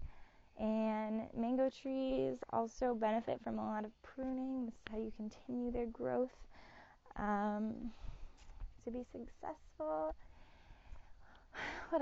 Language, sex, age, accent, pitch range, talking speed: English, female, 10-29, American, 205-250 Hz, 110 wpm